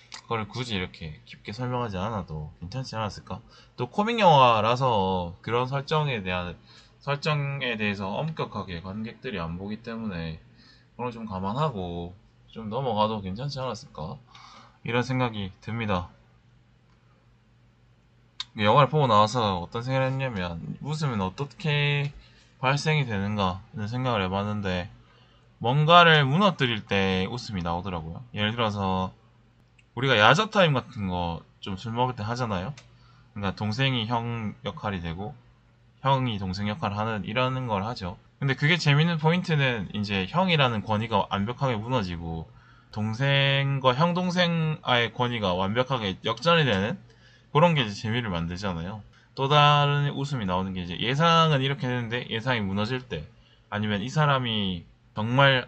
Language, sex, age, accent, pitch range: Korean, male, 20-39, native, 100-135 Hz